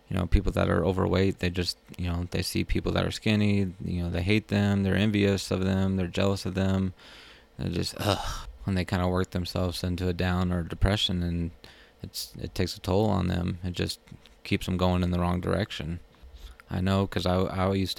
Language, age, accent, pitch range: English, 20-39, American, 90-95 Hz